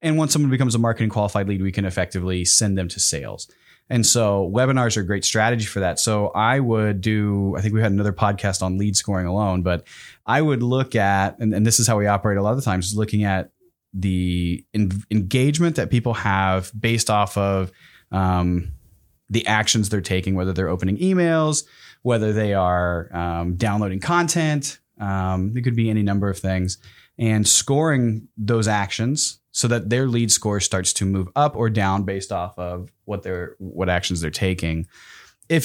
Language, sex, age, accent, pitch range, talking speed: English, male, 30-49, American, 95-120 Hz, 195 wpm